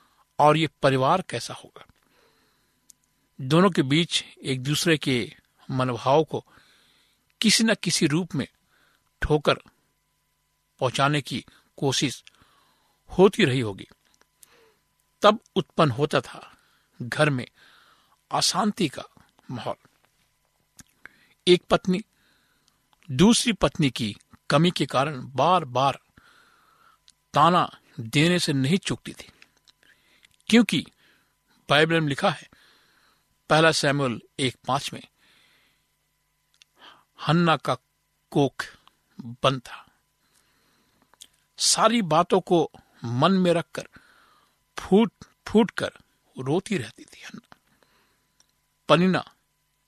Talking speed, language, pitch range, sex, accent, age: 95 wpm, Hindi, 140-185 Hz, male, native, 50-69